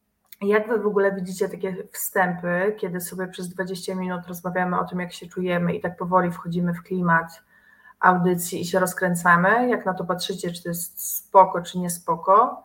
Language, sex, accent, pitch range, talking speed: Polish, female, native, 180-210 Hz, 180 wpm